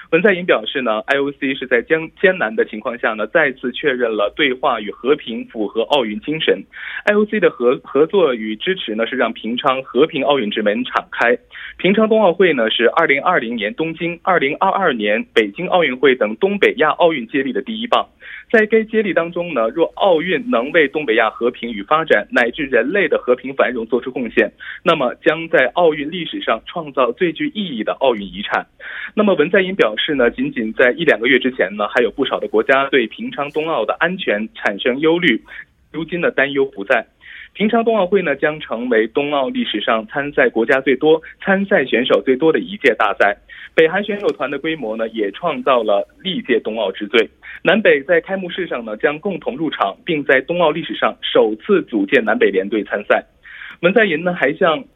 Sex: male